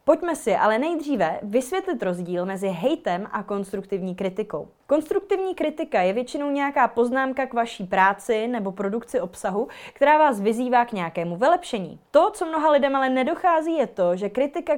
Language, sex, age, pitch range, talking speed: Czech, female, 20-39, 195-280 Hz, 160 wpm